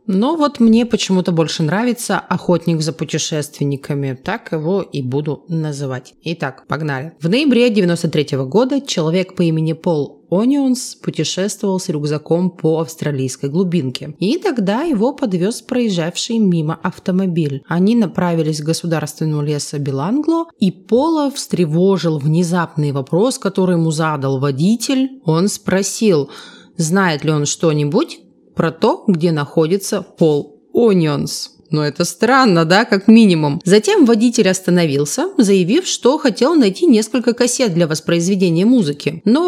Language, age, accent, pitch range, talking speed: Russian, 30-49, native, 155-220 Hz, 130 wpm